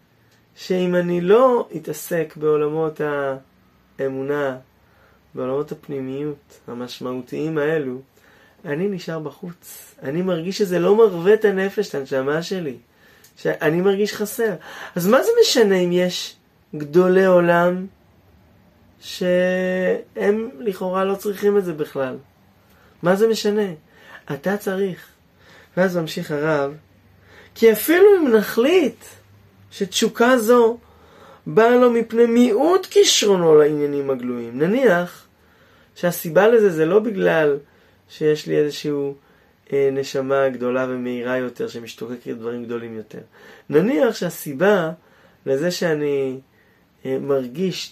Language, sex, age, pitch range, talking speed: Hebrew, male, 20-39, 135-195 Hz, 105 wpm